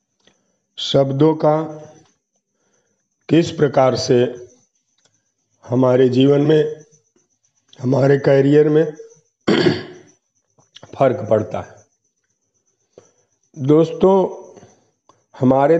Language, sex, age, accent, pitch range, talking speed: Hindi, male, 50-69, native, 120-145 Hz, 60 wpm